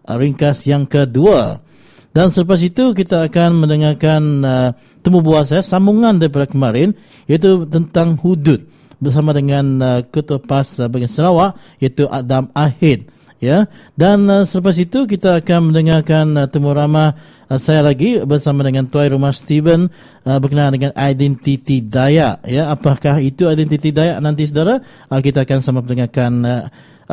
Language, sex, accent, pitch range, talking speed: English, male, Indonesian, 135-175 Hz, 145 wpm